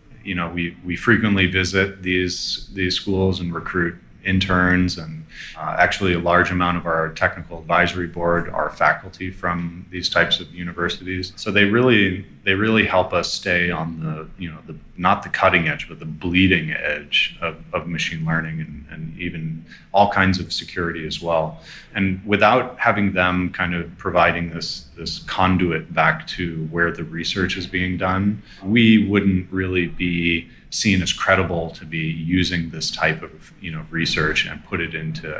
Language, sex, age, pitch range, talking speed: English, male, 30-49, 85-95 Hz, 175 wpm